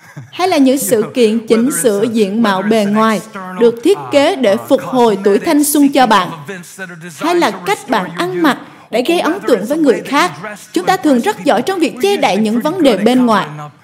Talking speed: 215 wpm